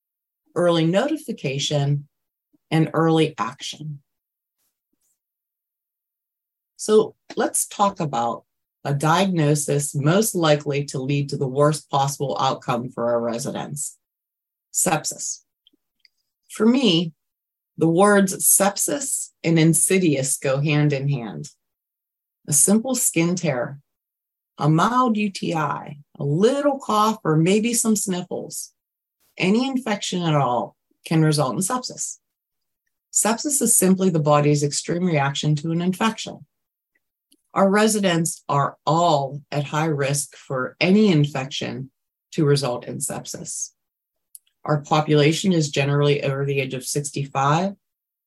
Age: 30-49